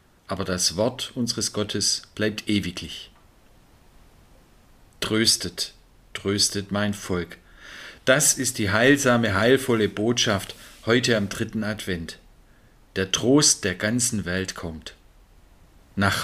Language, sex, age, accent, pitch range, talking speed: German, male, 50-69, German, 100-125 Hz, 105 wpm